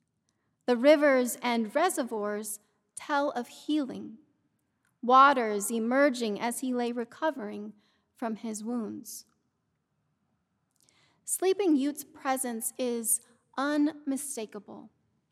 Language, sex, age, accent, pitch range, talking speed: English, female, 30-49, American, 225-275 Hz, 80 wpm